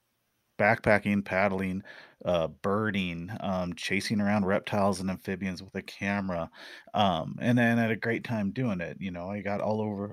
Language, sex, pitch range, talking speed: English, male, 100-130 Hz, 170 wpm